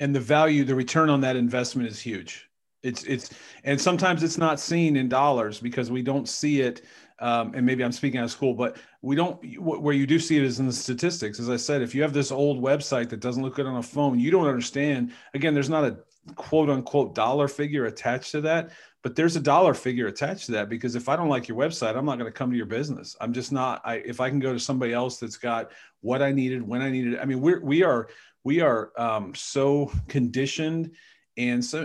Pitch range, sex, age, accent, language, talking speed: 120-145 Hz, male, 40-59, American, English, 240 wpm